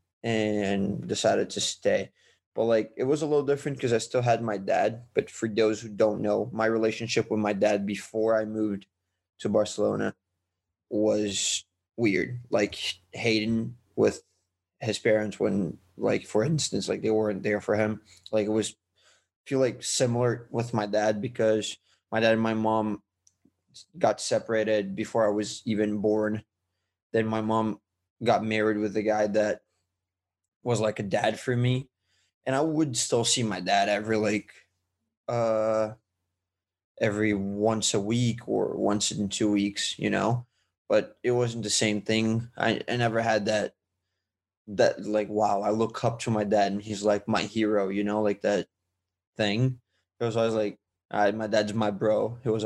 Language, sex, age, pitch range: English, male, 20-39, 100-110 Hz